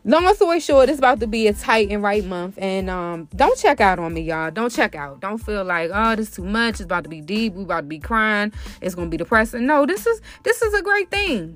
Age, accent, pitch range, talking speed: 20-39, American, 195-270 Hz, 275 wpm